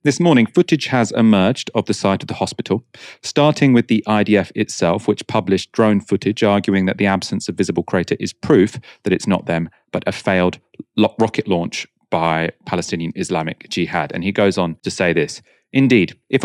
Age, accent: 30-49, British